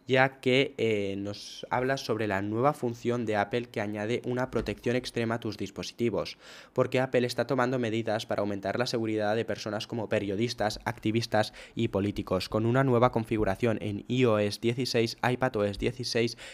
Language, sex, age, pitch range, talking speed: Spanish, male, 10-29, 105-125 Hz, 160 wpm